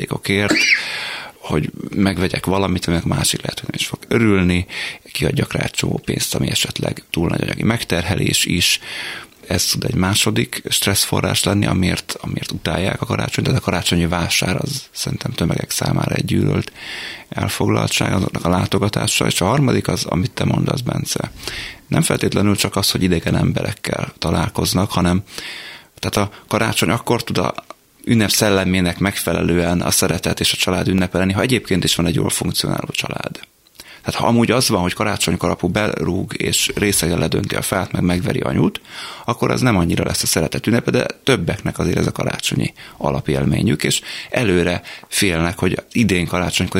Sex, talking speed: male, 155 wpm